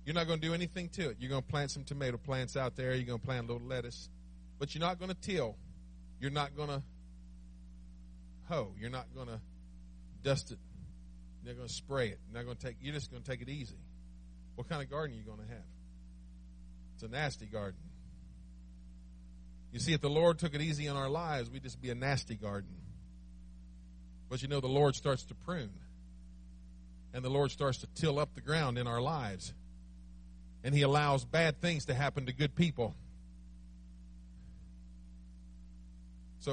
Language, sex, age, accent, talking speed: English, male, 40-59, American, 190 wpm